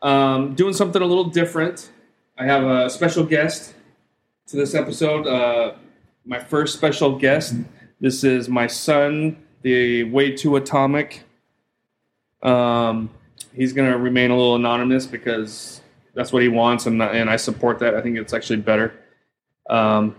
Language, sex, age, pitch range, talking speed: English, male, 20-39, 120-150 Hz, 155 wpm